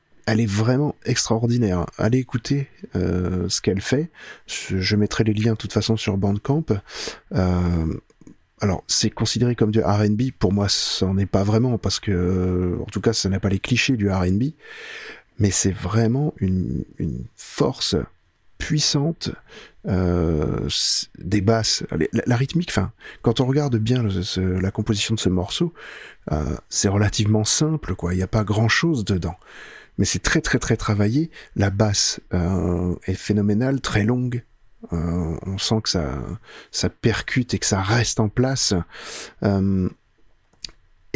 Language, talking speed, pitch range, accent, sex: French, 155 wpm, 95-120 Hz, French, male